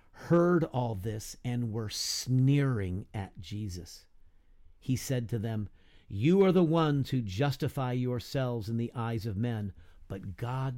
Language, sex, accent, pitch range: English, male, American, 95-155 Hz